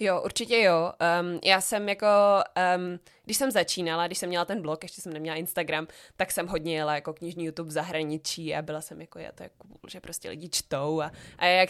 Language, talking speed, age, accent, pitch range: Czech, 220 wpm, 20-39, native, 165-200 Hz